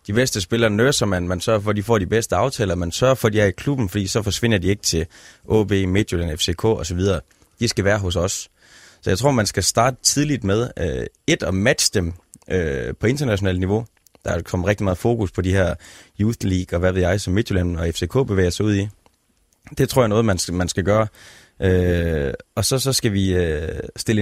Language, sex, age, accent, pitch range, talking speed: Danish, male, 20-39, native, 90-115 Hz, 235 wpm